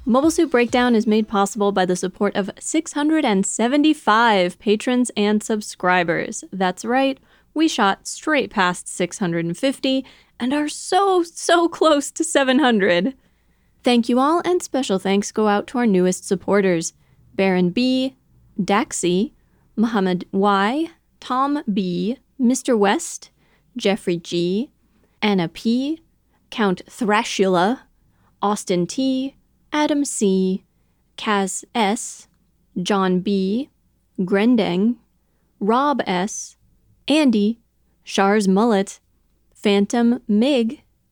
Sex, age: female, 20-39